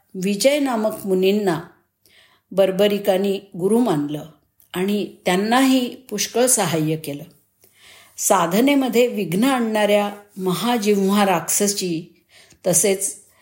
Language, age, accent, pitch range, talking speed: Marathi, 50-69, native, 170-225 Hz, 75 wpm